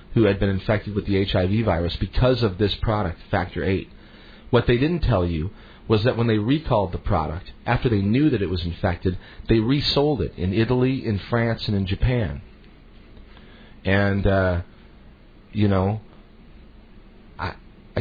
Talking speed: 160 wpm